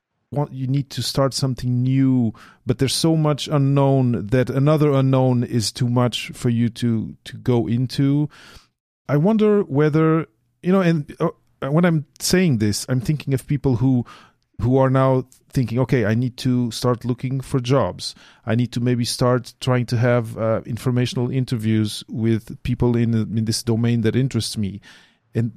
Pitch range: 115-135 Hz